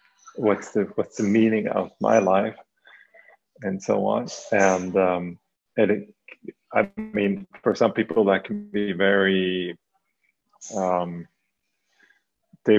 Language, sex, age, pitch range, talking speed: English, male, 30-49, 95-105 Hz, 115 wpm